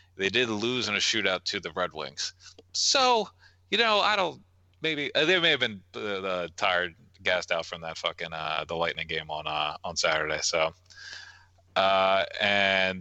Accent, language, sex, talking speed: American, English, male, 175 wpm